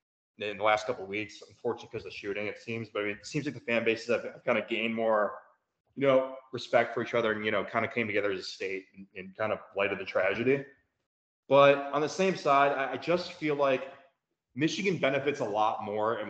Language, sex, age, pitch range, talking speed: English, male, 20-39, 110-135 Hz, 245 wpm